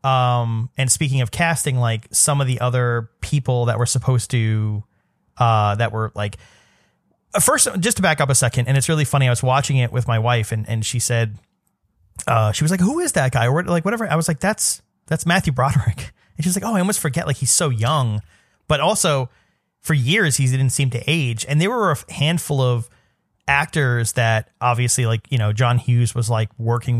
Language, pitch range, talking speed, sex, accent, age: English, 110-140 Hz, 215 wpm, male, American, 30-49